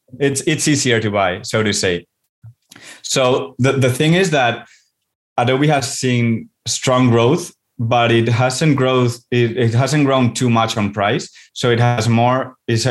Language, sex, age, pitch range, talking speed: English, male, 20-39, 110-125 Hz, 165 wpm